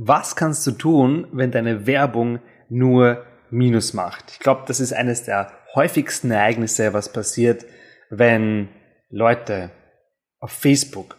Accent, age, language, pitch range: German, 20-39, German, 110-140 Hz